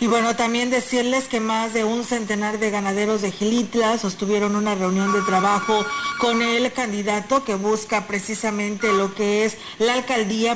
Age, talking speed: 40-59, 165 wpm